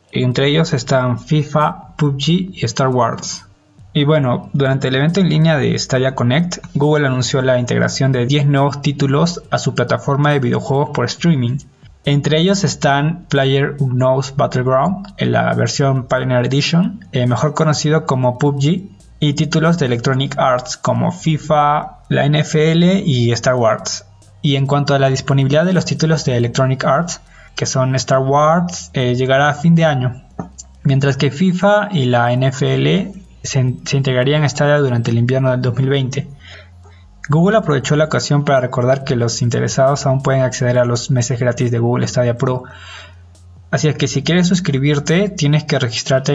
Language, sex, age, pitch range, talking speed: Spanish, male, 20-39, 125-150 Hz, 165 wpm